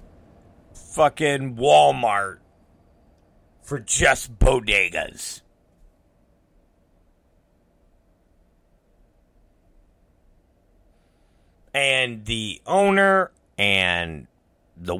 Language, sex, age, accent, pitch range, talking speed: English, male, 50-69, American, 85-140 Hz, 40 wpm